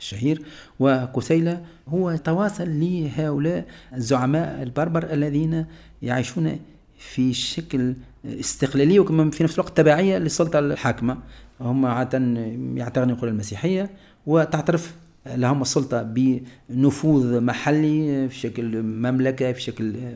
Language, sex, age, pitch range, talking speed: French, male, 40-59, 125-165 Hz, 100 wpm